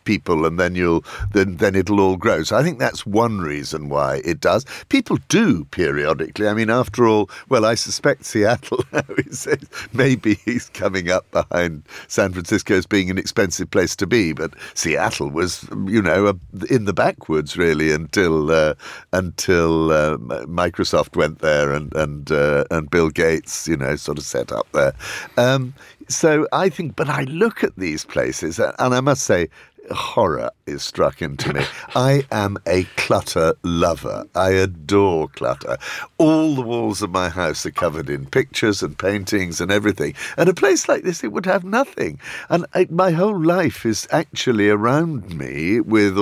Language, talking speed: English, 170 wpm